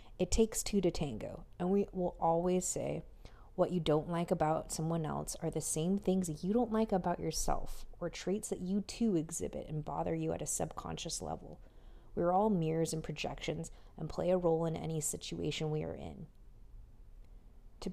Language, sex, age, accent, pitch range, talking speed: English, female, 30-49, American, 145-180 Hz, 185 wpm